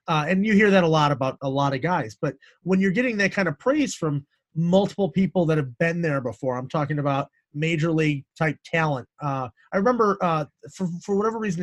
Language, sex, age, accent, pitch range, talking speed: English, male, 30-49, American, 145-180 Hz, 220 wpm